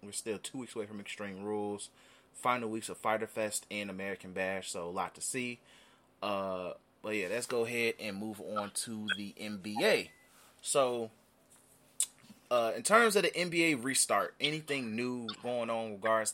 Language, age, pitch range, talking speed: English, 20-39, 105-125 Hz, 175 wpm